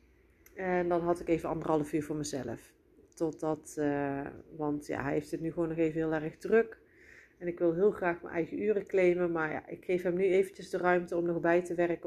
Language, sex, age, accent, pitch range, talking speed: Dutch, female, 40-59, Dutch, 165-210 Hz, 230 wpm